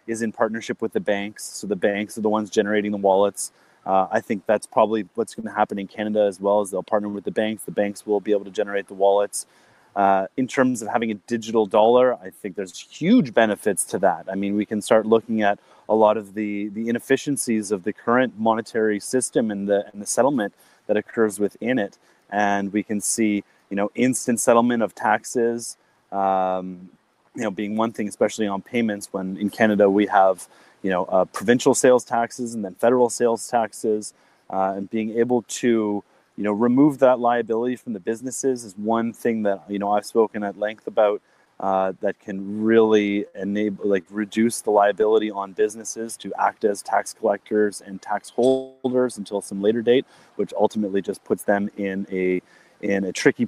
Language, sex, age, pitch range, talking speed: English, male, 30-49, 100-115 Hz, 195 wpm